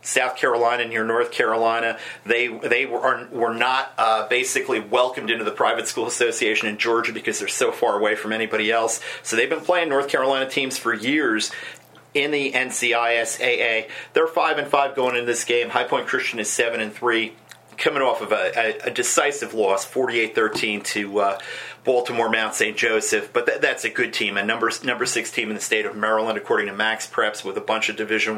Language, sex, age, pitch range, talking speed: English, male, 40-59, 115-145 Hz, 200 wpm